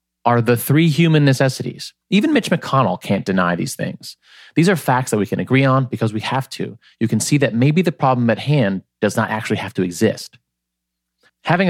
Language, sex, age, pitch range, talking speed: English, male, 30-49, 105-135 Hz, 205 wpm